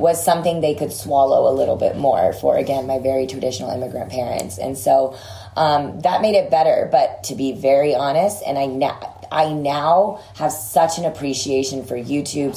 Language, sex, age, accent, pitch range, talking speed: English, female, 20-39, American, 130-155 Hz, 185 wpm